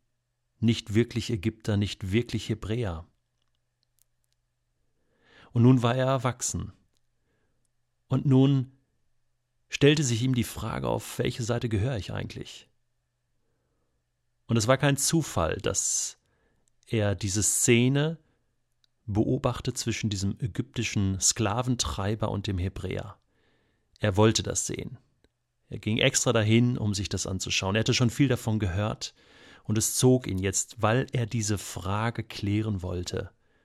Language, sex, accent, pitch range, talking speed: German, male, German, 105-125 Hz, 125 wpm